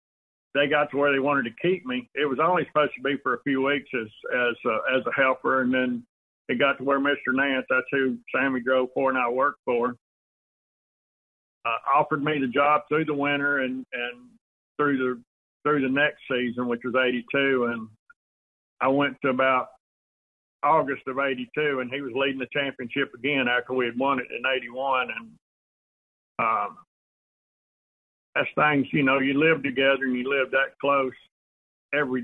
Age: 50-69